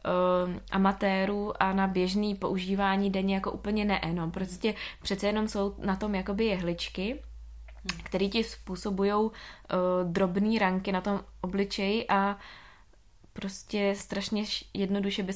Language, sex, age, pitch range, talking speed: Czech, female, 20-39, 180-200 Hz, 120 wpm